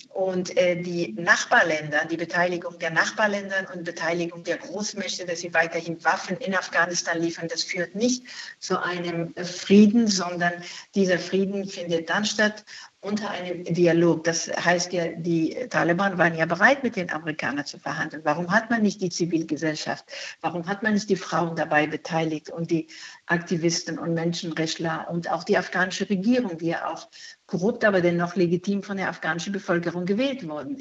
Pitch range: 170-195 Hz